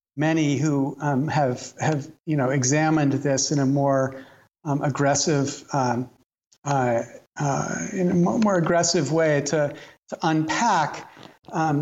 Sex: male